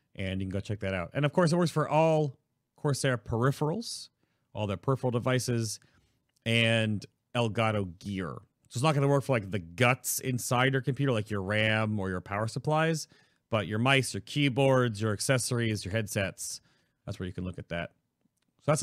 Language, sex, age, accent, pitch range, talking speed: English, male, 30-49, American, 105-135 Hz, 195 wpm